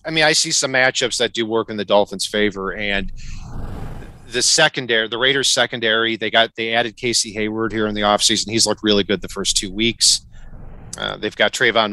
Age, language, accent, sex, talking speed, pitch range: 40-59, English, American, male, 205 wpm, 105-130 Hz